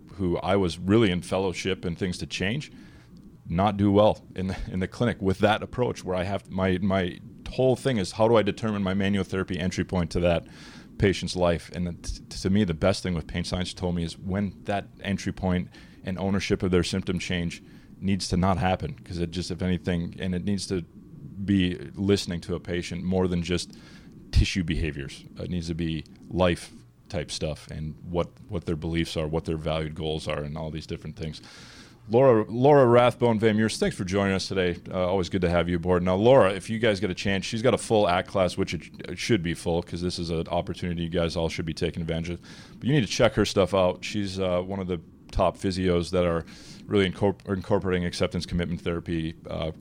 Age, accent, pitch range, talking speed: 30-49, American, 85-95 Hz, 220 wpm